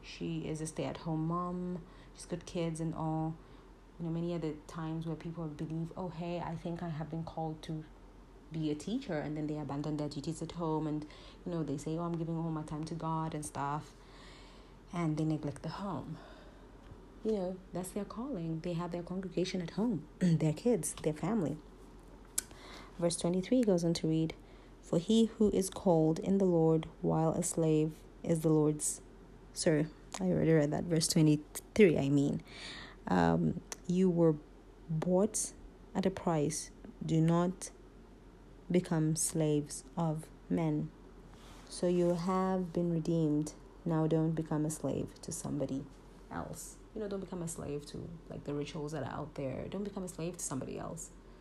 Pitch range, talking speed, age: 155-175 Hz, 175 wpm, 30-49